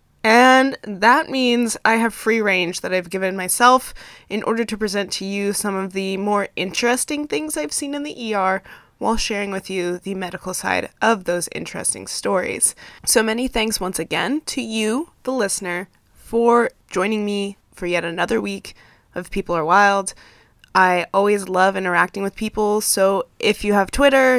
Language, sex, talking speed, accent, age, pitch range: English, female, 170 wpm, American, 20-39, 185-225 Hz